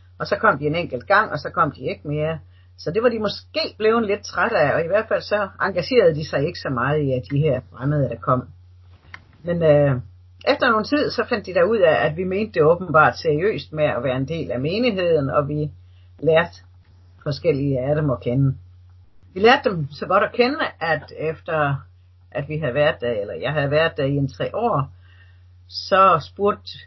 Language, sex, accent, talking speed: English, female, Danish, 215 wpm